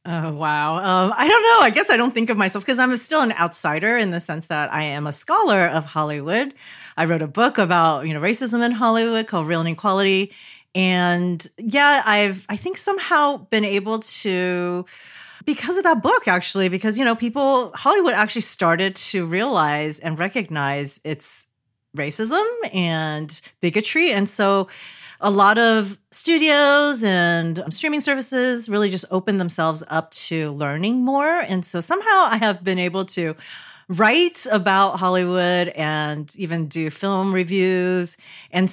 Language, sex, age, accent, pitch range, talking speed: English, female, 30-49, American, 170-230 Hz, 165 wpm